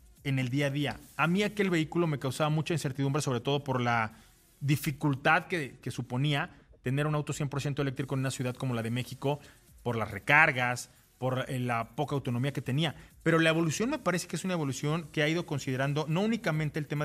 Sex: male